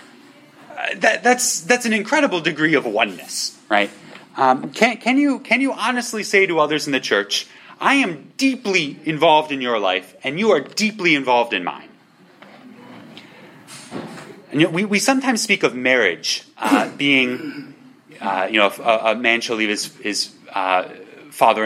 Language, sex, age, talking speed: English, male, 30-49, 165 wpm